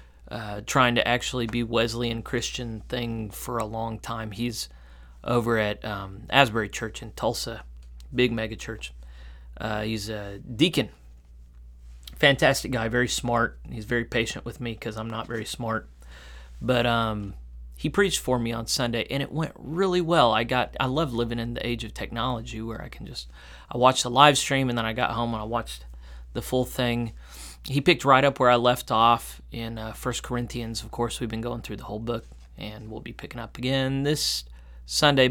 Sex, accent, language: male, American, English